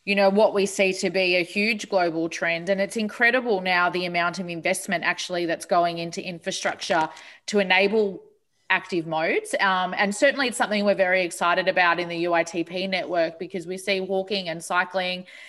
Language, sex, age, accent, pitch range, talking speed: English, female, 20-39, Australian, 170-195 Hz, 180 wpm